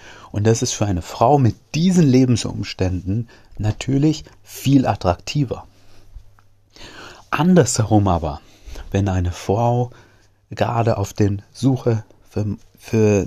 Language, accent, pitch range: German, German, 95-120 Hz